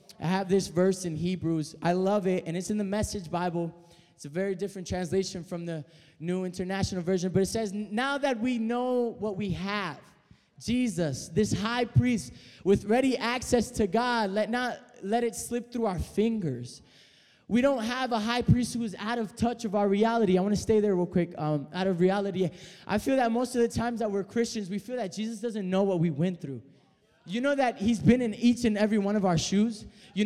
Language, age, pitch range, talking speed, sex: English, 20-39, 185-230 Hz, 220 wpm, male